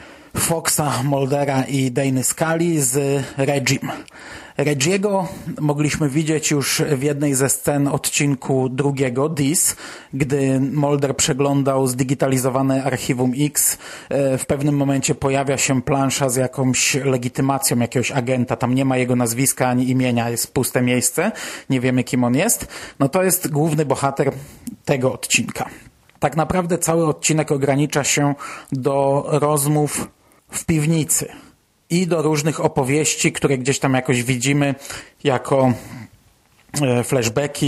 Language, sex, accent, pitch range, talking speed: Polish, male, native, 130-150 Hz, 125 wpm